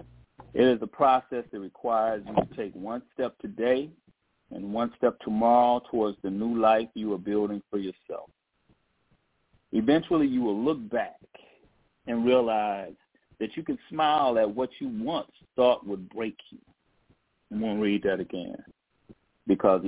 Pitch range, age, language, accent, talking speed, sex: 100-115 Hz, 40-59, English, American, 155 wpm, male